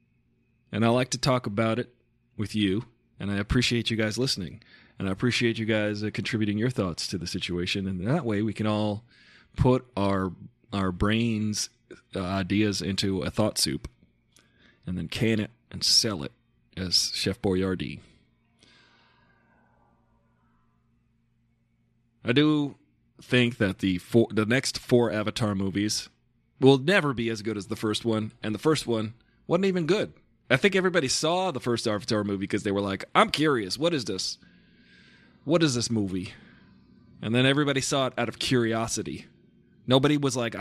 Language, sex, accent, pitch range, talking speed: English, male, American, 100-125 Hz, 165 wpm